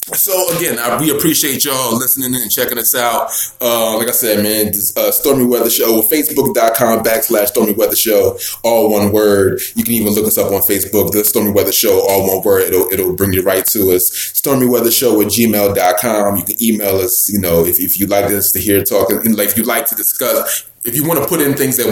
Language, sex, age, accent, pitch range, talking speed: English, male, 20-39, American, 95-120 Hz, 240 wpm